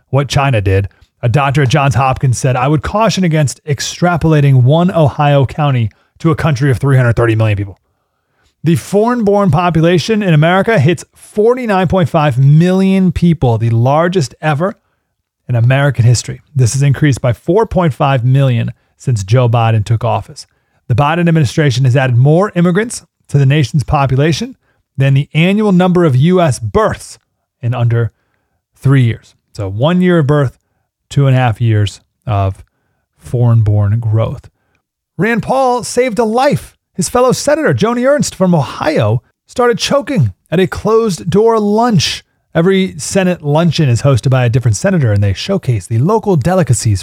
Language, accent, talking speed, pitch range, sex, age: English, American, 150 wpm, 125-185 Hz, male, 30-49